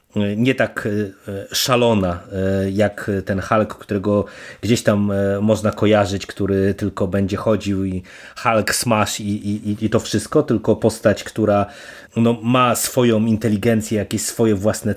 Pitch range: 100-115 Hz